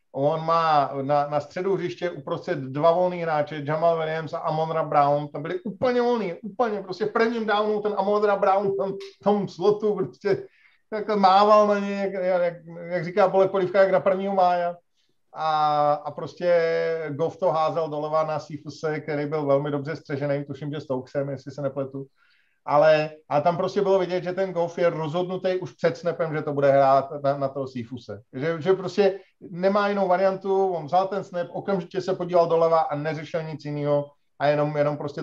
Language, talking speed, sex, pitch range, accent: Czech, 185 wpm, male, 145-185 Hz, native